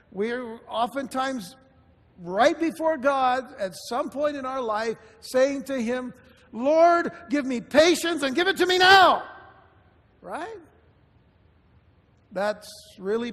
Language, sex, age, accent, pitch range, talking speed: English, male, 60-79, American, 185-270 Hz, 120 wpm